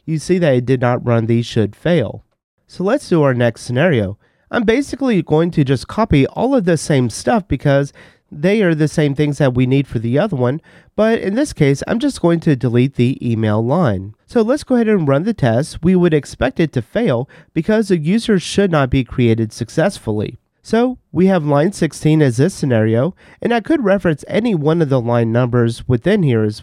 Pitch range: 120-180 Hz